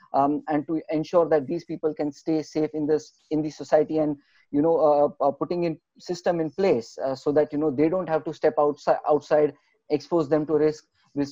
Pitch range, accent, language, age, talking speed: 145-155 Hz, Indian, English, 20-39, 225 wpm